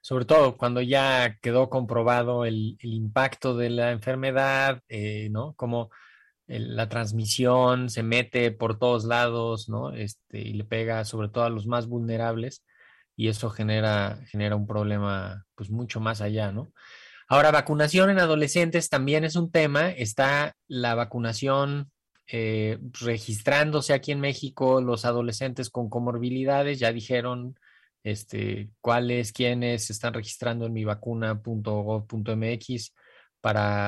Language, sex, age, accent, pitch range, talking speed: Spanish, male, 20-39, Mexican, 110-125 Hz, 135 wpm